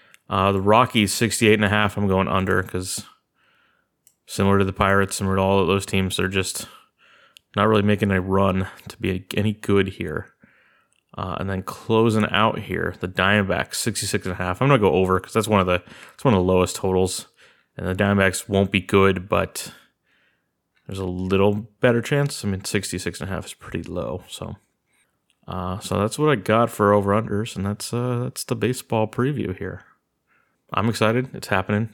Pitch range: 95-110 Hz